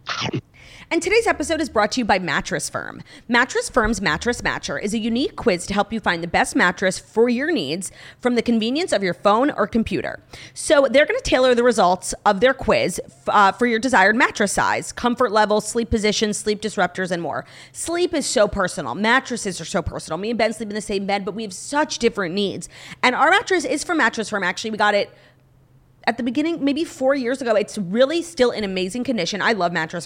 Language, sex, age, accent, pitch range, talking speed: English, female, 30-49, American, 185-250 Hz, 220 wpm